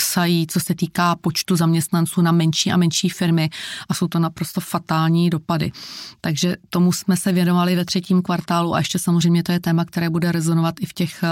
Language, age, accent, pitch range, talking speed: Czech, 30-49, native, 170-185 Hz, 190 wpm